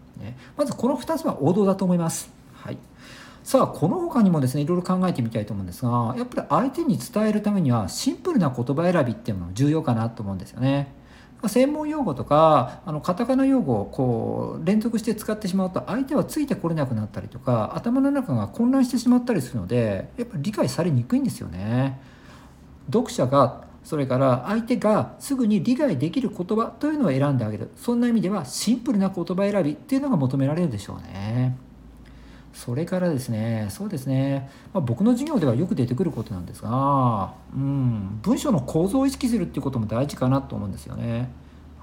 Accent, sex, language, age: native, male, Japanese, 50-69